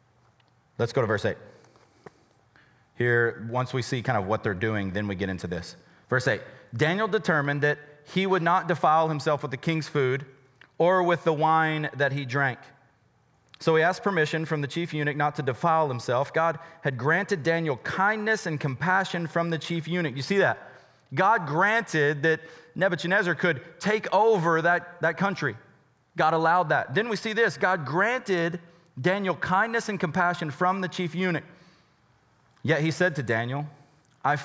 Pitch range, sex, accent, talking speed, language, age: 135-180 Hz, male, American, 170 wpm, English, 30-49